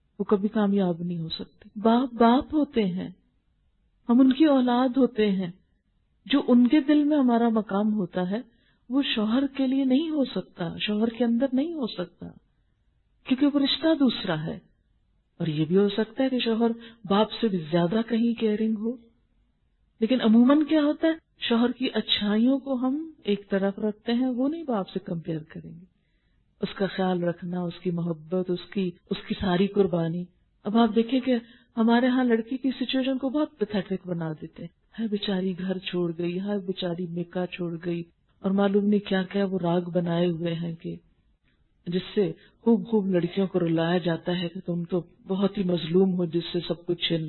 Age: 50-69